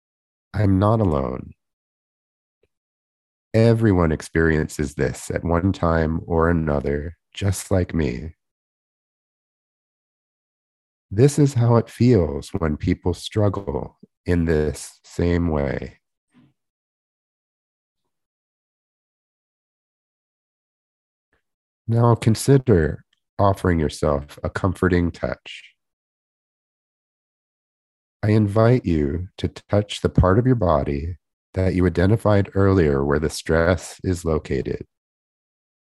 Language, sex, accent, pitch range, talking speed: English, male, American, 75-100 Hz, 85 wpm